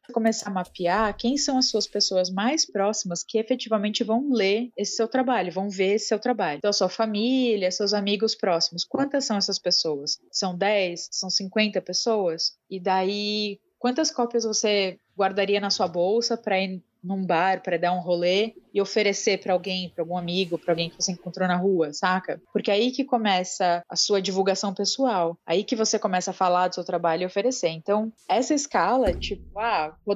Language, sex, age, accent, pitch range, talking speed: Portuguese, female, 20-39, Brazilian, 180-220 Hz, 190 wpm